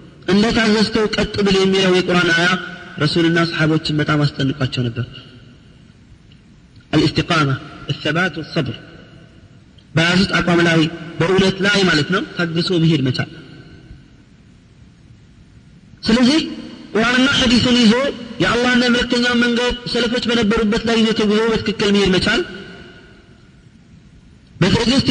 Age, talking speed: 30-49, 105 wpm